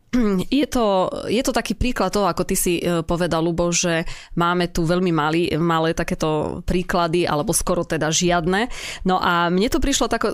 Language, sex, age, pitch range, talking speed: Slovak, female, 20-39, 165-195 Hz, 180 wpm